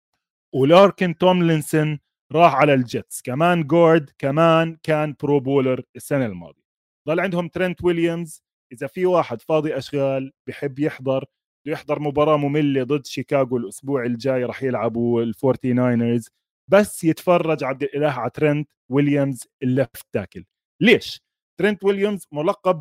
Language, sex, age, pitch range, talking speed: Arabic, male, 20-39, 135-180 Hz, 125 wpm